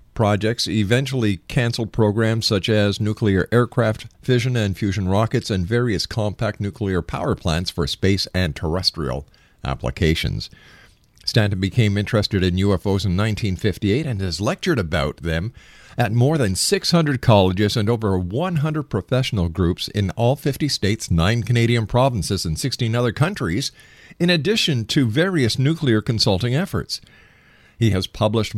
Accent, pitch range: American, 95-125 Hz